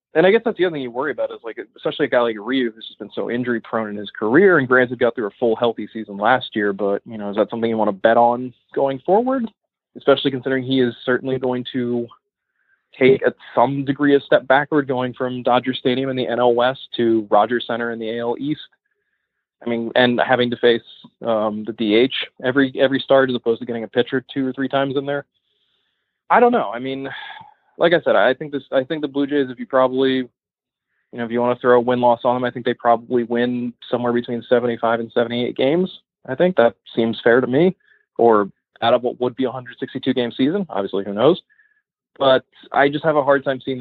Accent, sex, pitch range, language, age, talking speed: American, male, 115-140 Hz, English, 20-39, 235 wpm